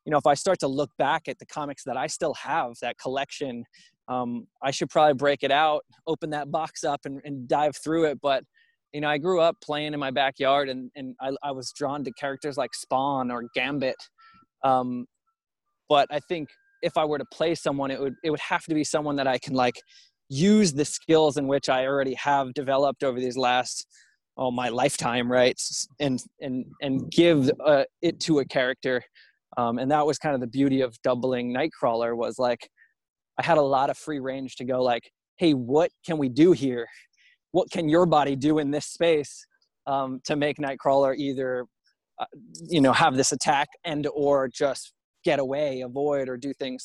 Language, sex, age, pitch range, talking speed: English, male, 20-39, 130-155 Hz, 205 wpm